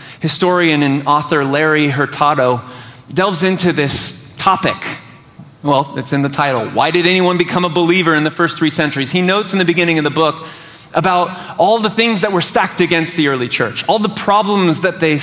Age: 30-49